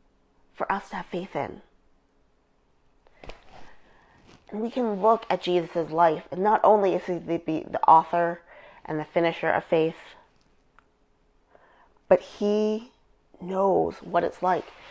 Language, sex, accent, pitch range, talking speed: English, female, American, 160-195 Hz, 130 wpm